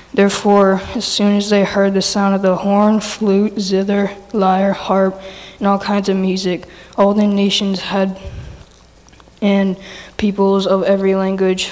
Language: English